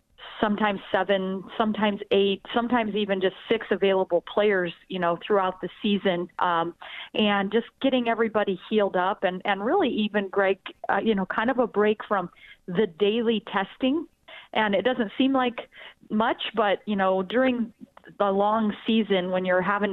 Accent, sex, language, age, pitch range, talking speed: American, female, English, 40-59, 185-220 Hz, 165 wpm